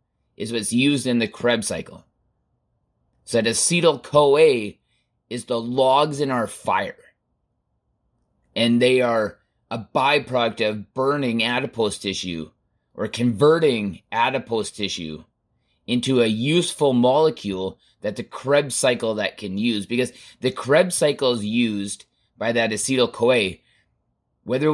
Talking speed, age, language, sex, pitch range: 120 wpm, 30-49, English, male, 105-130 Hz